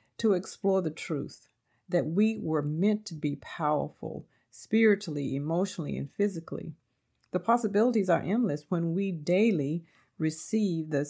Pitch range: 150-190 Hz